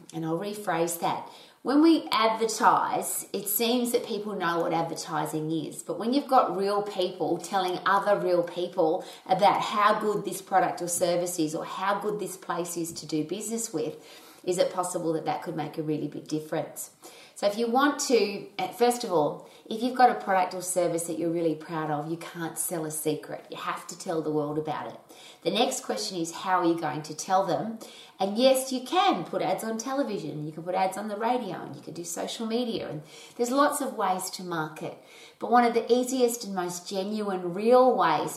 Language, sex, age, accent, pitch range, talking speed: English, female, 30-49, Australian, 165-235 Hz, 215 wpm